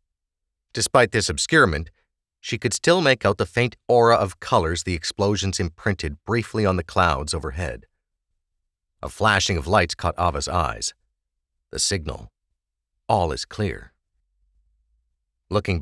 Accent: American